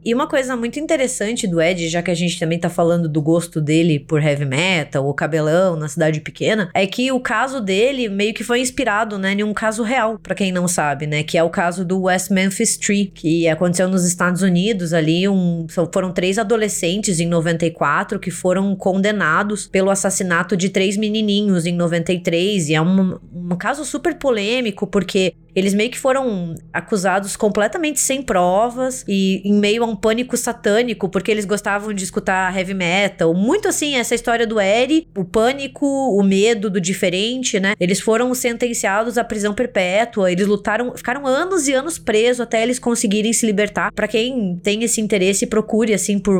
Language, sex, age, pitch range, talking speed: Portuguese, female, 20-39, 185-235 Hz, 185 wpm